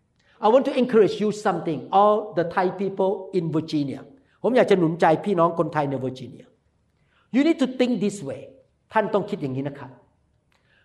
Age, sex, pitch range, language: 50-69, male, 215-320 Hz, Thai